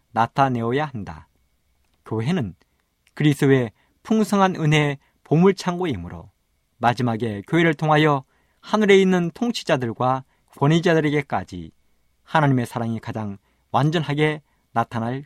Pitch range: 100-160 Hz